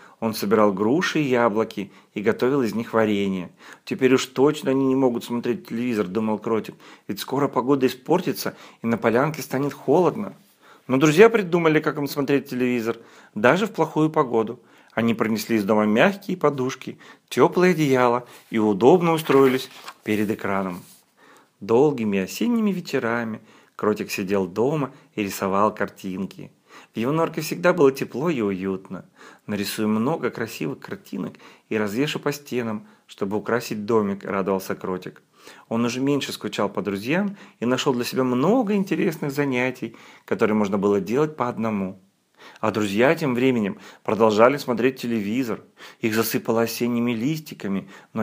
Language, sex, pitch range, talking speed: Russian, male, 105-140 Hz, 140 wpm